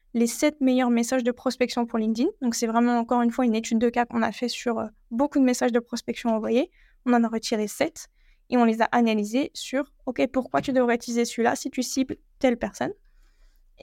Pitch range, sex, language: 235-275 Hz, female, French